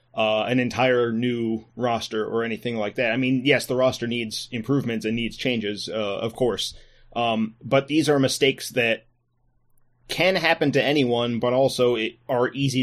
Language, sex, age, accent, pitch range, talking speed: English, male, 30-49, American, 115-130 Hz, 175 wpm